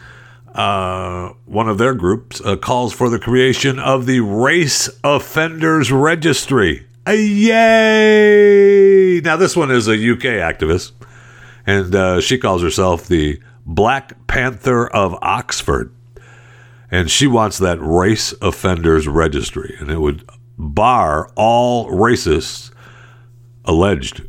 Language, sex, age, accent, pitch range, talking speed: English, male, 60-79, American, 90-125 Hz, 120 wpm